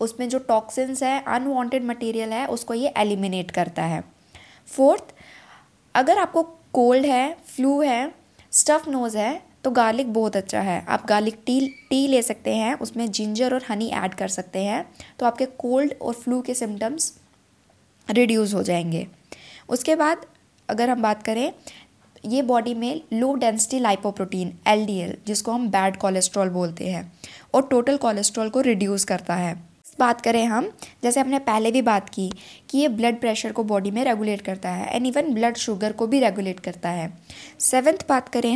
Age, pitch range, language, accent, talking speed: 20-39, 205-260 Hz, Hindi, native, 170 wpm